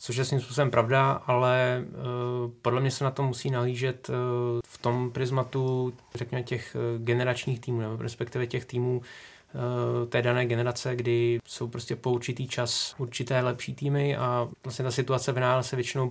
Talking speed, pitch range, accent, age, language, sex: 155 wpm, 120-125 Hz, native, 20-39, Czech, male